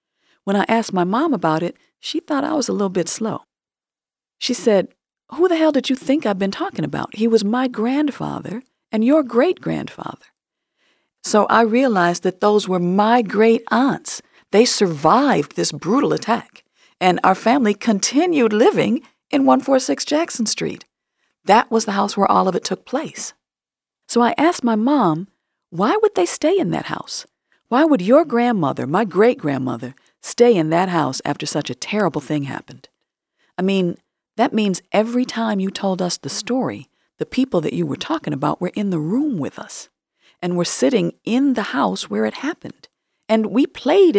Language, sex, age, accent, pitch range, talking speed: English, female, 50-69, American, 170-250 Hz, 175 wpm